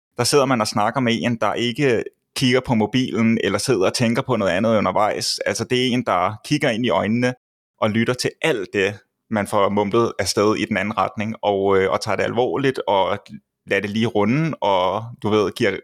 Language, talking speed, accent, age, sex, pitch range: English, 220 wpm, Danish, 20-39, male, 105-120 Hz